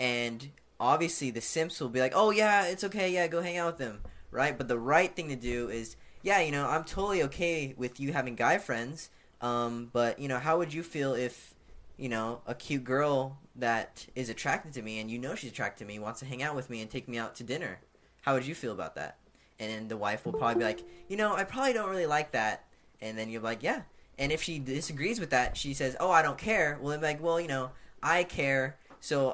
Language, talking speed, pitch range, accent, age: English, 250 wpm, 120-160 Hz, American, 10-29